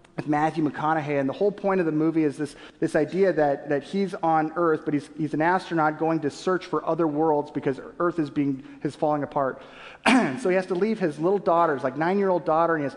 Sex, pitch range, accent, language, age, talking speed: male, 155-205 Hz, American, English, 30-49, 230 wpm